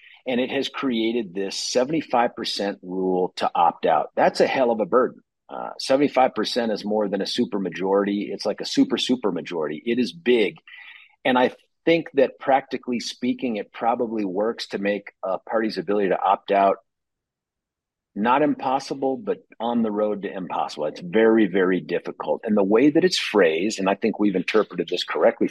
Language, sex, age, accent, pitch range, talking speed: English, male, 50-69, American, 100-130 Hz, 175 wpm